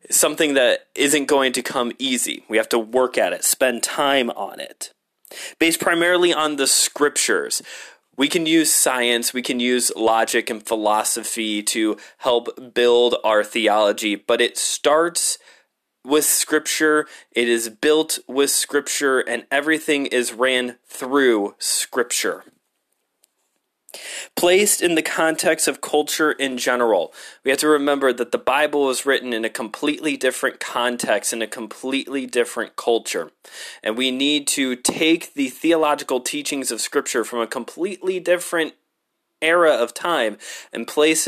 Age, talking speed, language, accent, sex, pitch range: 20-39, 145 wpm, English, American, male, 120-160 Hz